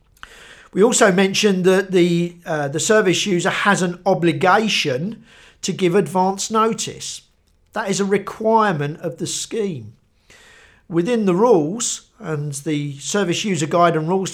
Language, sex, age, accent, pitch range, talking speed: English, male, 50-69, British, 155-195 Hz, 135 wpm